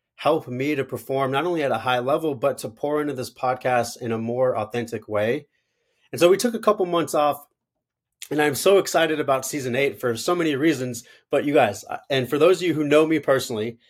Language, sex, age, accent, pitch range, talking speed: English, male, 30-49, American, 130-165 Hz, 225 wpm